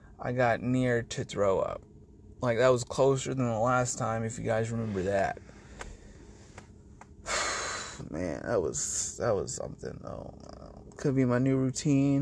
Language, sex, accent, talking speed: English, male, American, 150 wpm